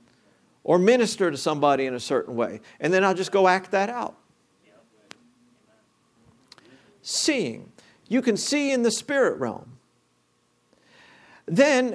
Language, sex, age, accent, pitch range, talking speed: English, male, 50-69, American, 165-230 Hz, 125 wpm